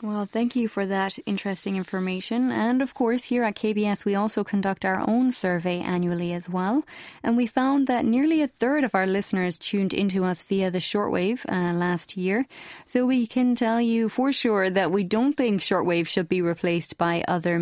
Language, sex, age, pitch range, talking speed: English, female, 20-39, 185-230 Hz, 200 wpm